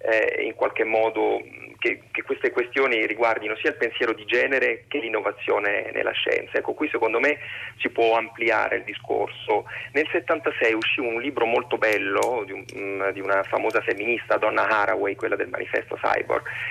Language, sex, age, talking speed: Italian, male, 30-49, 165 wpm